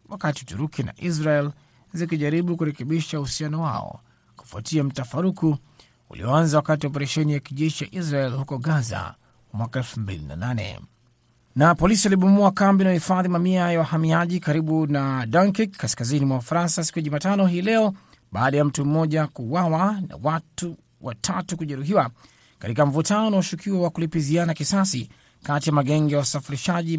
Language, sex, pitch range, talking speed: Swahili, male, 135-170 Hz, 135 wpm